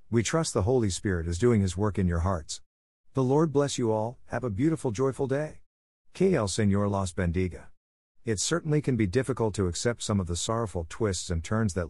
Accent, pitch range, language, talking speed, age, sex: American, 90-120 Hz, English, 210 wpm, 50-69, male